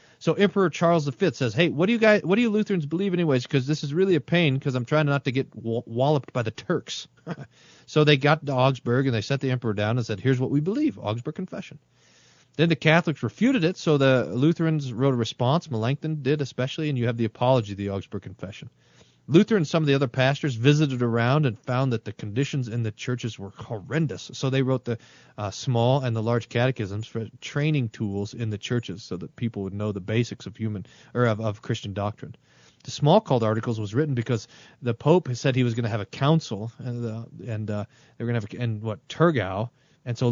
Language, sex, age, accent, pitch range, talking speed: English, male, 40-59, American, 115-150 Hz, 230 wpm